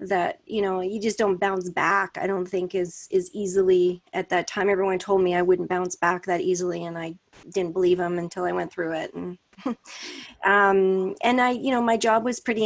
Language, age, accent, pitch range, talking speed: English, 30-49, American, 190-220 Hz, 220 wpm